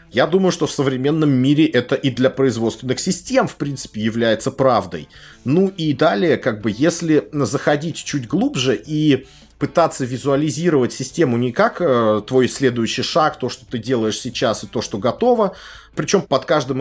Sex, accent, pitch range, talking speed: male, native, 125-155 Hz, 165 wpm